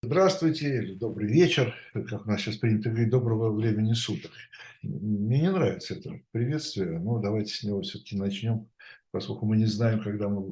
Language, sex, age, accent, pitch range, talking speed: Russian, male, 60-79, native, 105-125 Hz, 165 wpm